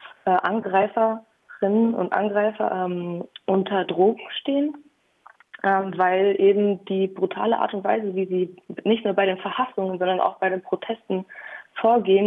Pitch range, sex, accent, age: 190-225 Hz, female, German, 20-39